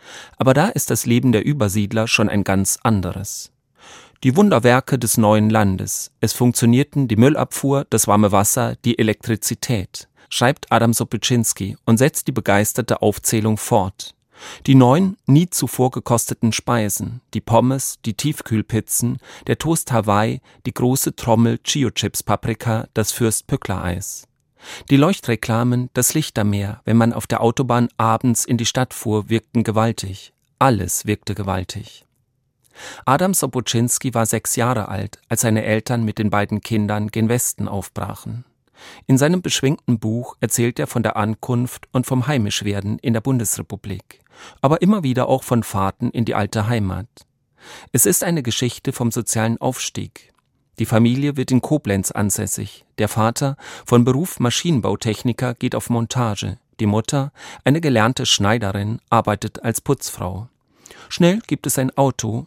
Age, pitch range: 40-59, 105-130 Hz